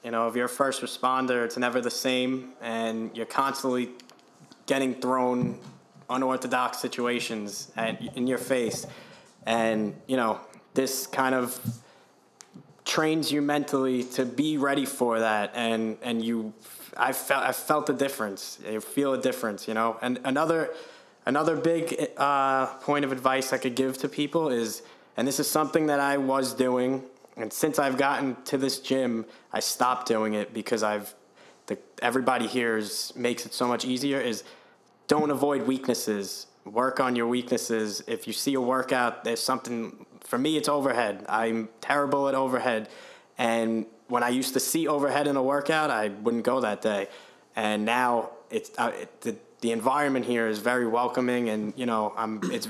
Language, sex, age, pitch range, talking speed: English, male, 20-39, 115-140 Hz, 170 wpm